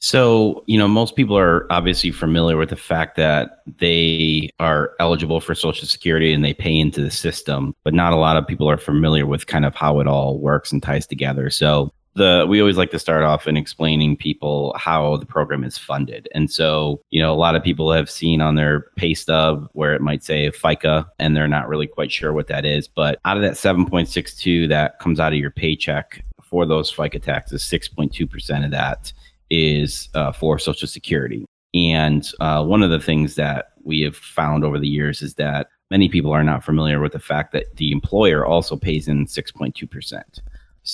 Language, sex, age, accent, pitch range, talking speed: English, male, 30-49, American, 75-85 Hz, 205 wpm